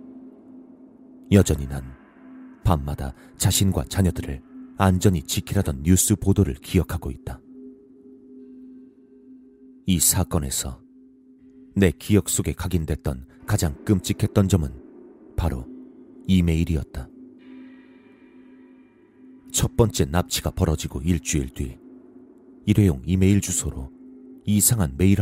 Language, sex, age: Korean, male, 40-59